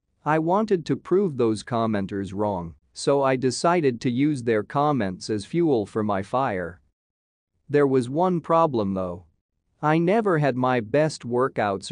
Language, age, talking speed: English, 40-59, 150 wpm